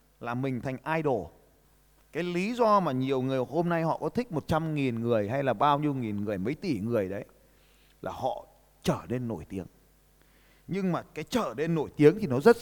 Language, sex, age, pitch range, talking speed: Vietnamese, male, 20-39, 135-210 Hz, 215 wpm